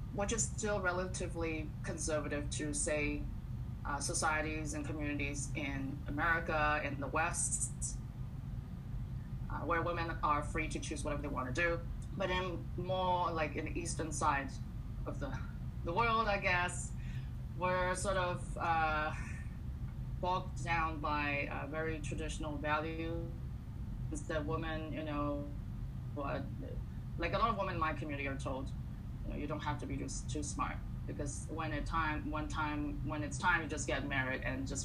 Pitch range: 135-160 Hz